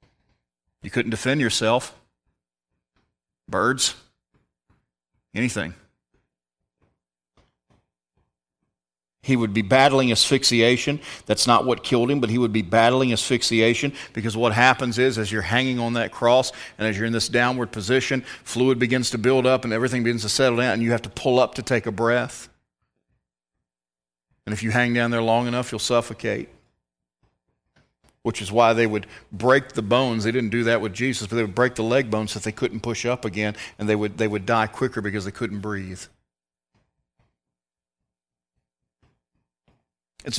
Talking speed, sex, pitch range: 160 wpm, male, 100-125 Hz